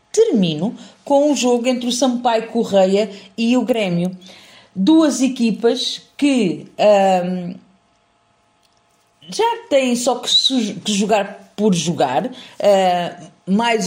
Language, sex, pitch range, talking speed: Portuguese, female, 180-230 Hz, 115 wpm